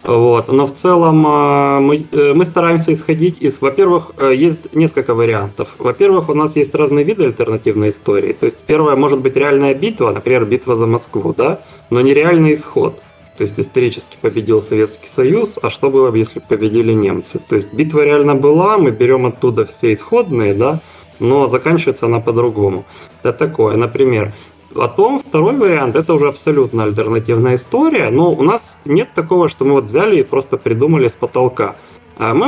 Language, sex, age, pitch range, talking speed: Russian, male, 20-39, 115-180 Hz, 165 wpm